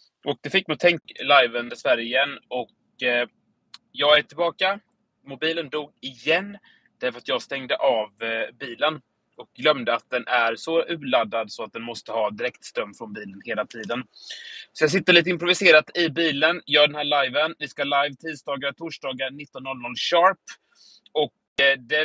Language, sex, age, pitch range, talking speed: Swedish, male, 30-49, 130-165 Hz, 175 wpm